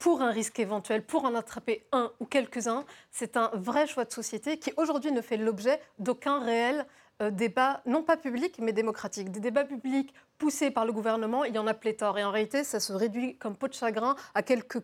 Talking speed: 215 wpm